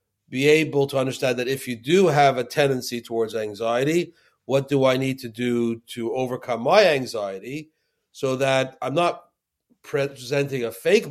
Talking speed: 165 wpm